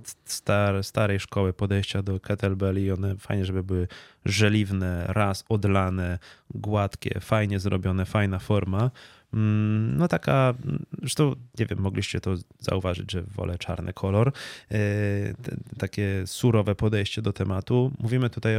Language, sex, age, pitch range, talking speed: Polish, male, 20-39, 100-115 Hz, 120 wpm